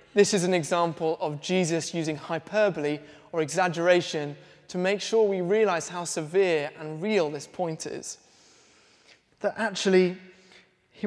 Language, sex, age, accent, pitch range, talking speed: English, male, 20-39, British, 165-210 Hz, 135 wpm